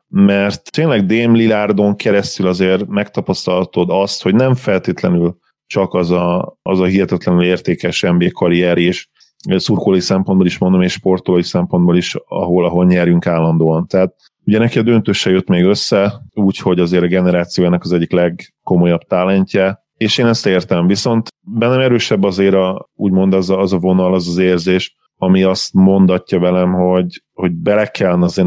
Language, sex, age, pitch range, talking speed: Hungarian, male, 30-49, 90-100 Hz, 160 wpm